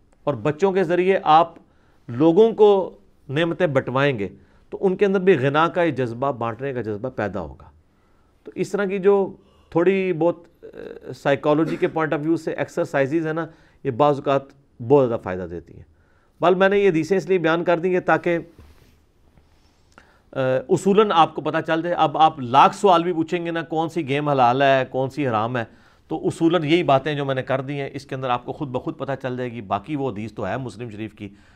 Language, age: English, 50-69